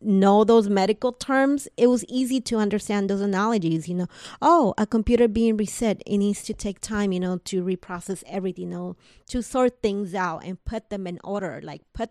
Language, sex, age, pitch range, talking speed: English, female, 30-49, 180-230 Hz, 205 wpm